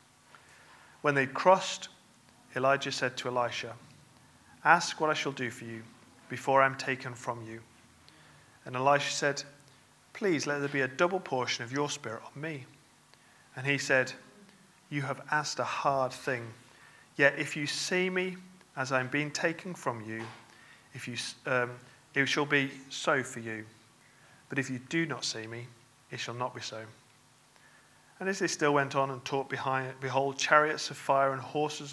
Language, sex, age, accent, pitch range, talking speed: English, male, 40-59, British, 125-145 Hz, 175 wpm